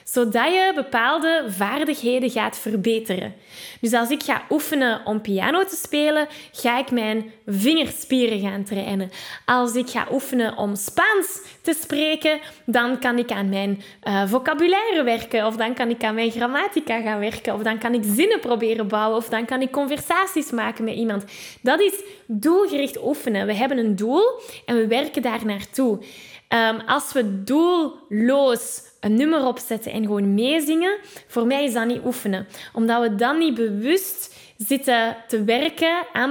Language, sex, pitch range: Dutch, female, 220-285 Hz